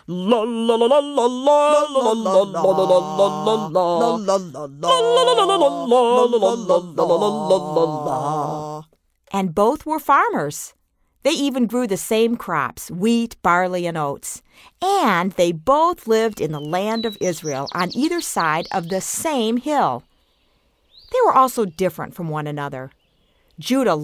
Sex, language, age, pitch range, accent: female, English, 50-69, 165-245 Hz, American